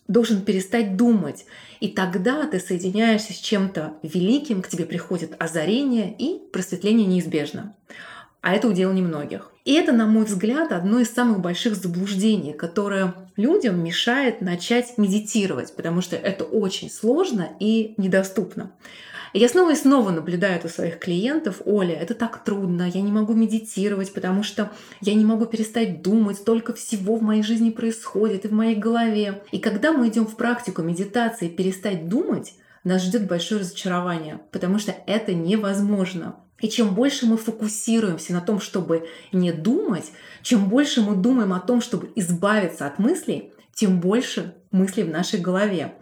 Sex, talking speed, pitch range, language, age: female, 155 wpm, 185-225 Hz, Russian, 20-39